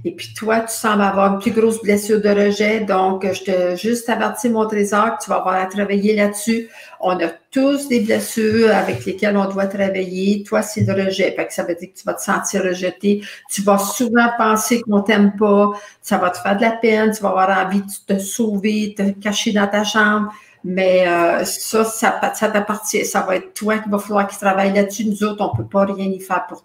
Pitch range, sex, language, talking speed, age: 200-235 Hz, female, French, 230 wpm, 50-69